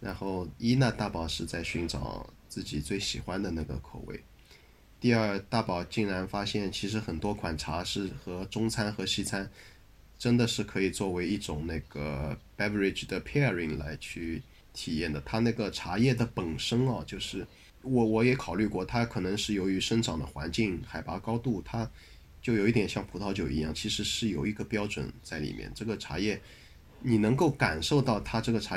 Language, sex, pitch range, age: Chinese, male, 90-115 Hz, 20-39